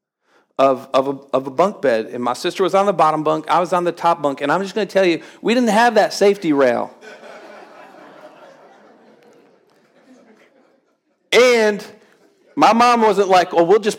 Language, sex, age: English, male, 40-59